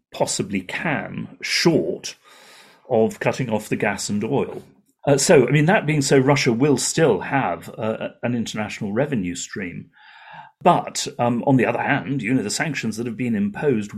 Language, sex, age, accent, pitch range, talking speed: English, male, 40-59, British, 105-135 Hz, 170 wpm